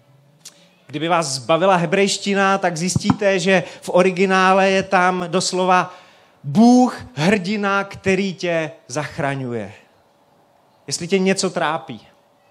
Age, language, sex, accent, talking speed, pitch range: 30-49, Czech, male, native, 100 wpm, 150-200 Hz